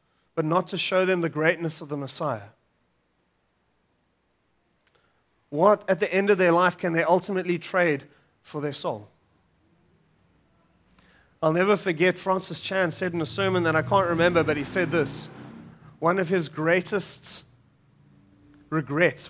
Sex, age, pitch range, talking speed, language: male, 30-49, 125-175 Hz, 145 wpm, English